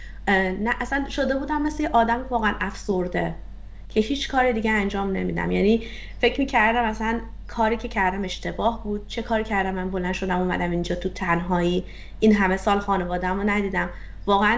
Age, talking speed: 30-49, 170 wpm